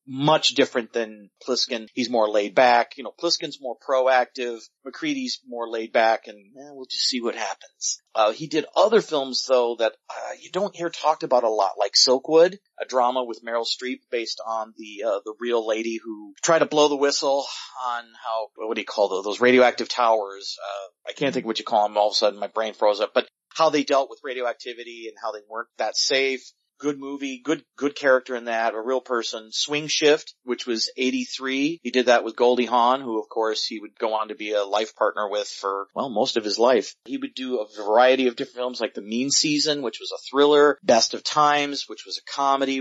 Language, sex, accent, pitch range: English, male, American, 115-140 Hz